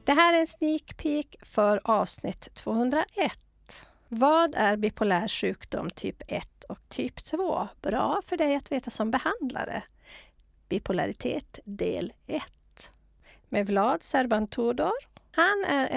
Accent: Swedish